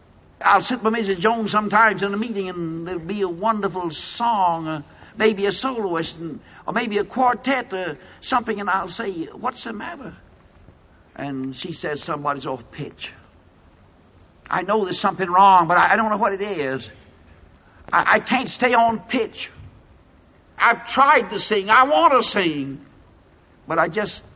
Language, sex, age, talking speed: English, male, 60-79, 160 wpm